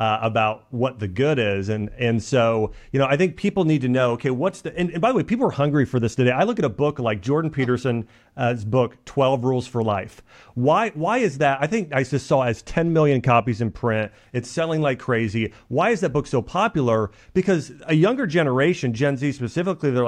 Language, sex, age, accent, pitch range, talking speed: English, male, 40-59, American, 115-150 Hz, 235 wpm